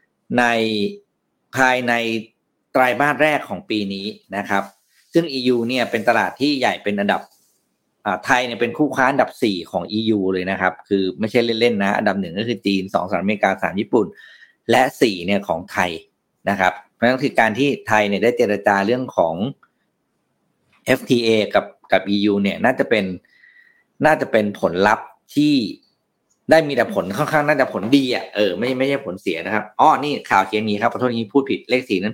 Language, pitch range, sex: Thai, 105-145 Hz, male